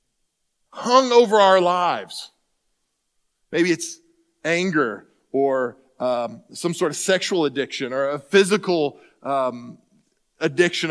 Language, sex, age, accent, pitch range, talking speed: English, male, 40-59, American, 180-275 Hz, 105 wpm